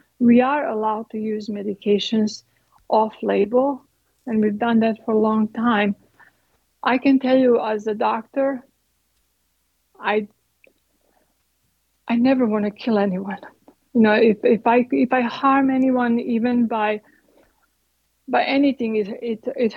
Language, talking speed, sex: English, 135 wpm, female